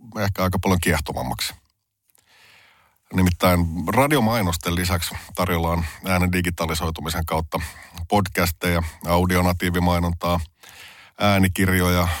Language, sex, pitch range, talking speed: Finnish, male, 85-95 Hz, 70 wpm